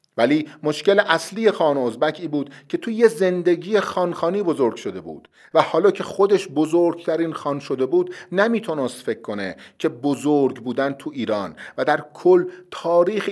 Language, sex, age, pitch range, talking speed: Persian, male, 40-59, 155-205 Hz, 155 wpm